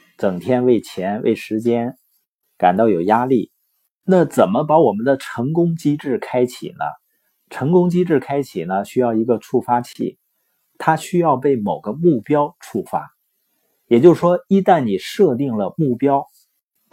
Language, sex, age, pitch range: Chinese, male, 50-69, 115-165 Hz